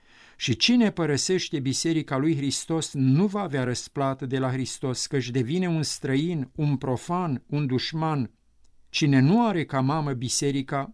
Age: 50-69